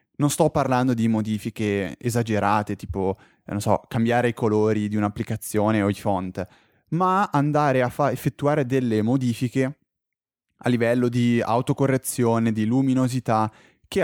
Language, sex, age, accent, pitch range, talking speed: Italian, male, 20-39, native, 105-130 Hz, 135 wpm